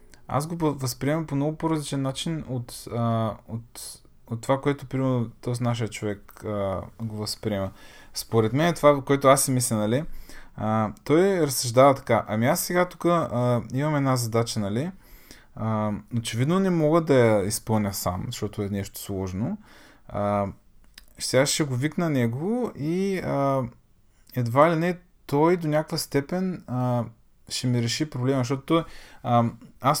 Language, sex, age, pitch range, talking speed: Bulgarian, male, 20-39, 115-150 Hz, 140 wpm